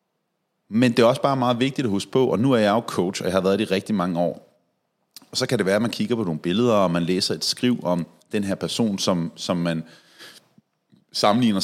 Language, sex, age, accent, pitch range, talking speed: Danish, male, 30-49, native, 95-135 Hz, 245 wpm